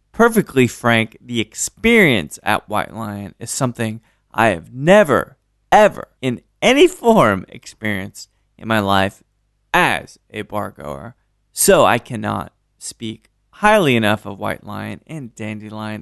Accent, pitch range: American, 105-130 Hz